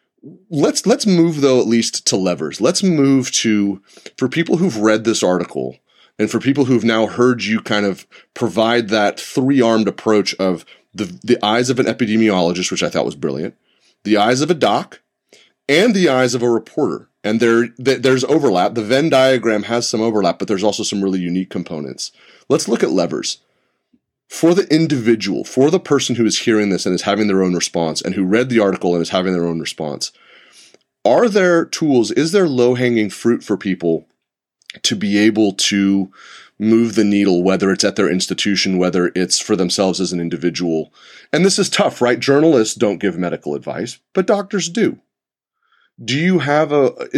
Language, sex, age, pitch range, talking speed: English, male, 30-49, 95-135 Hz, 190 wpm